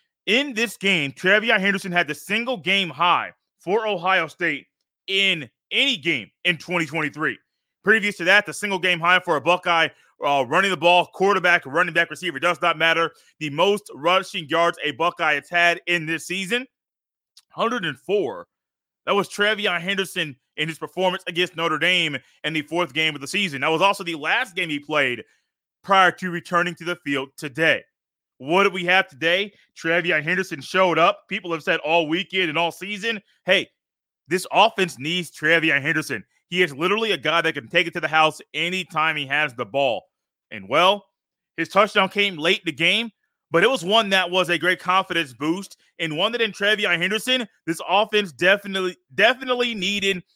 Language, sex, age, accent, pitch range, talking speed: English, male, 30-49, American, 165-195 Hz, 180 wpm